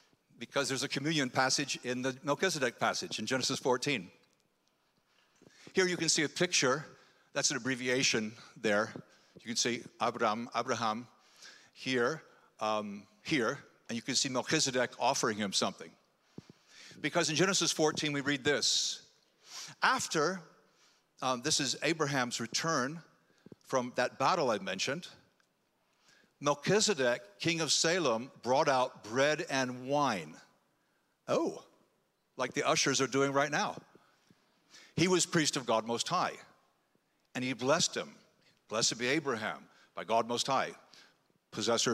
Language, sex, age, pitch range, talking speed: English, male, 60-79, 120-155 Hz, 130 wpm